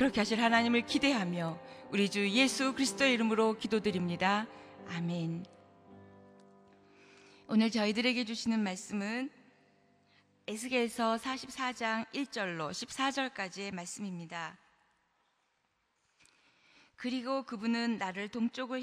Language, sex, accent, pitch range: Korean, female, native, 190-235 Hz